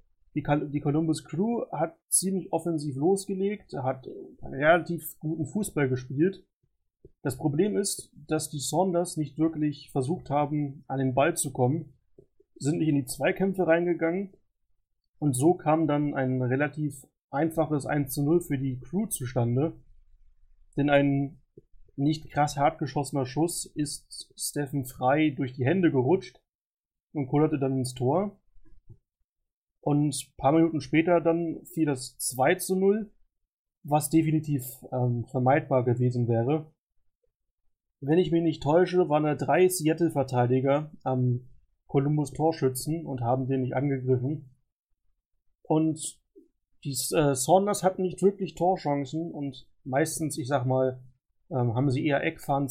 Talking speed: 135 wpm